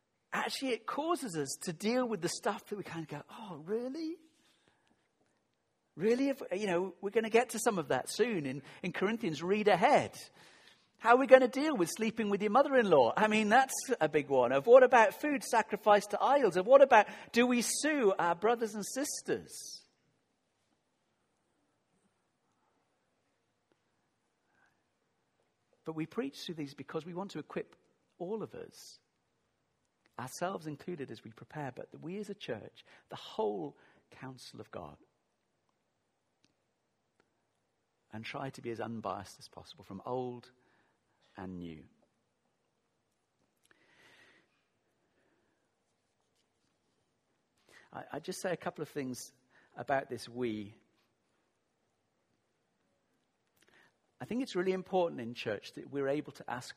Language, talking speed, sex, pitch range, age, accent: English, 135 wpm, male, 140-230 Hz, 50-69, British